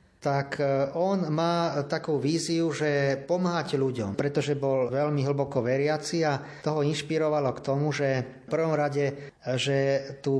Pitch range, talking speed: 135-165 Hz, 140 wpm